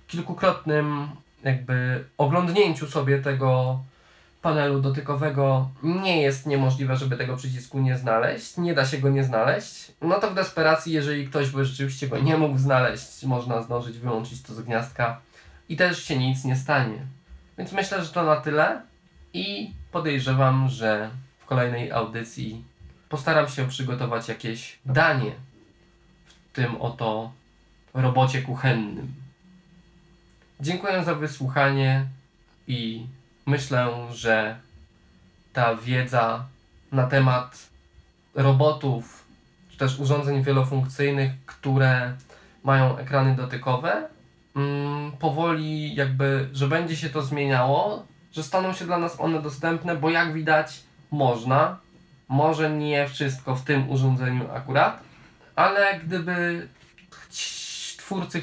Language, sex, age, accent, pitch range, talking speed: Polish, male, 20-39, native, 125-155 Hz, 115 wpm